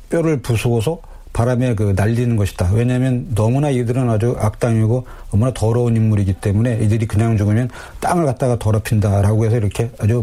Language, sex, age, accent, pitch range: Korean, male, 40-59, native, 105-130 Hz